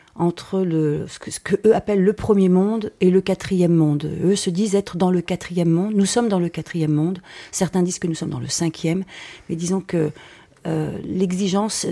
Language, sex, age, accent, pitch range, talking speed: French, female, 40-59, French, 170-200 Hz, 210 wpm